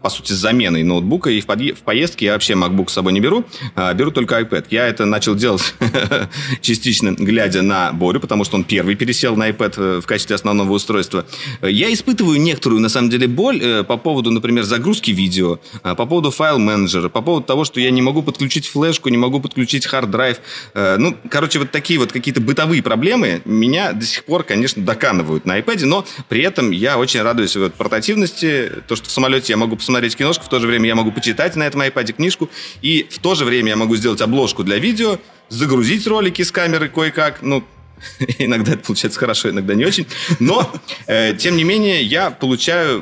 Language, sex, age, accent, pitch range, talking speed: Russian, male, 30-49, native, 105-140 Hz, 200 wpm